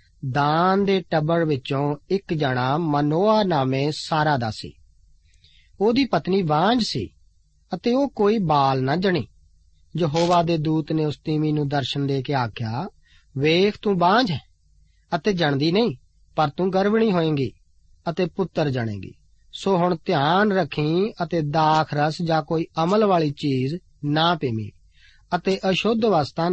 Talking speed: 140 wpm